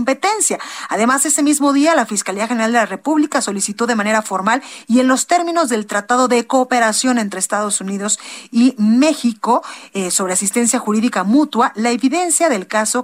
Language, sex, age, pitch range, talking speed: Spanish, female, 40-59, 210-275 Hz, 170 wpm